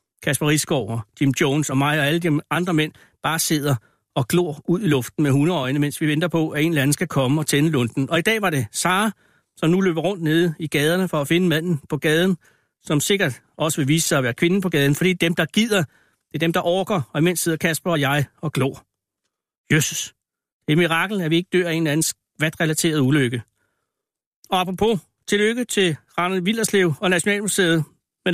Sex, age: male, 60-79